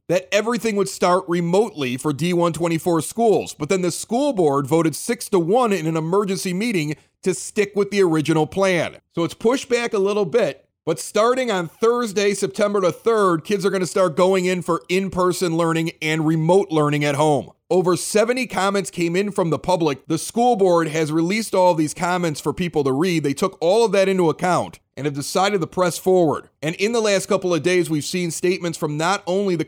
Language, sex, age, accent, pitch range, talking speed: English, male, 30-49, American, 155-195 Hz, 210 wpm